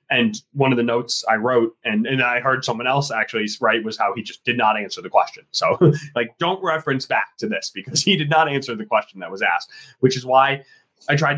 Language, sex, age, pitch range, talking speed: English, male, 20-39, 120-150 Hz, 245 wpm